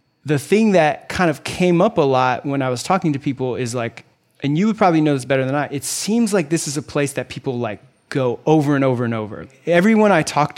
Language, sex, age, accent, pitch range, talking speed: English, male, 20-39, American, 125-160 Hz, 255 wpm